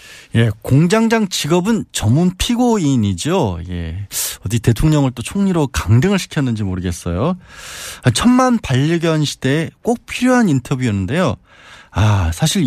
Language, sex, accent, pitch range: Korean, male, native, 110-175 Hz